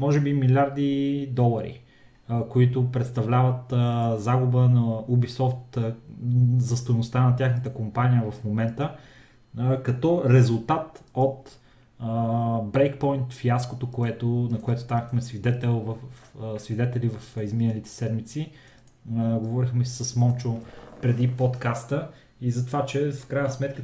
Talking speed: 105 wpm